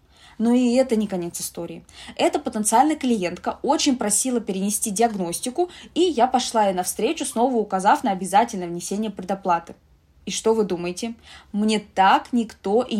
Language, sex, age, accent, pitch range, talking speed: Russian, female, 20-39, native, 180-230 Hz, 150 wpm